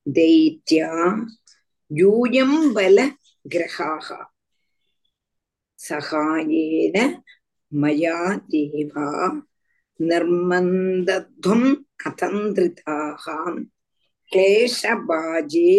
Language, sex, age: Tamil, female, 50-69